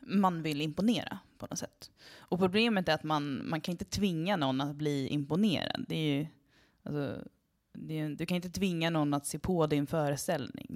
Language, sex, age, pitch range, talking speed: Swedish, female, 20-39, 140-180 Hz, 195 wpm